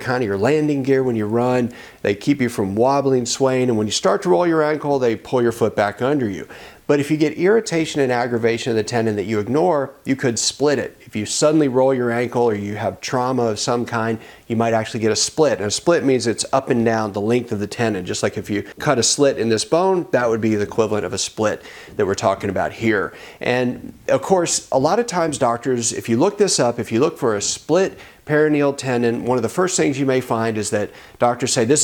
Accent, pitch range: American, 115-140 Hz